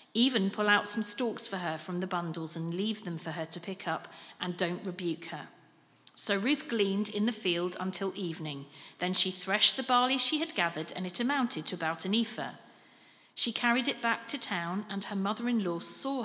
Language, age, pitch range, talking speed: English, 40-59, 170-235 Hz, 205 wpm